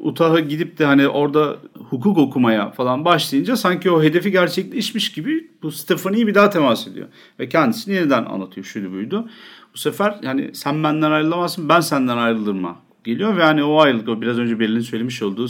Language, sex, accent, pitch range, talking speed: Turkish, male, native, 115-165 Hz, 180 wpm